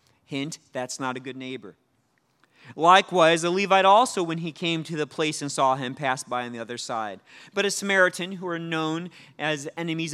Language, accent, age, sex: English, American, 30-49, male